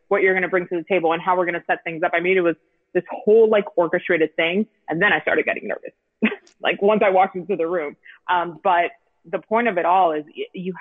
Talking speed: 260 wpm